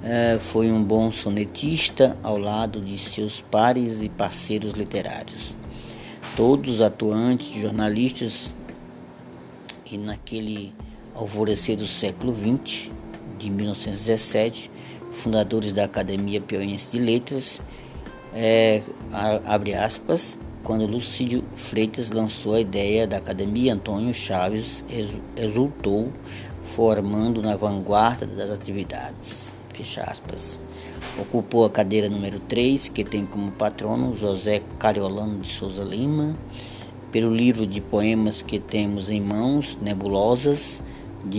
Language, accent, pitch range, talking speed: Portuguese, Brazilian, 100-115 Hz, 105 wpm